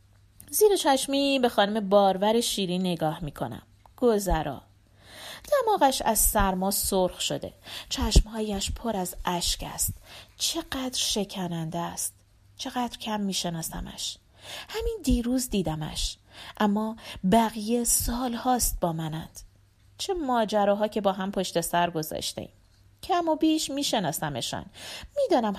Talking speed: 110 wpm